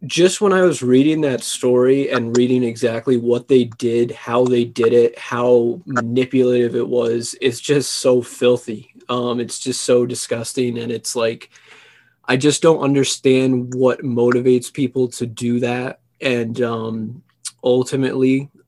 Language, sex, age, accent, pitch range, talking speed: English, male, 20-39, American, 115-130 Hz, 150 wpm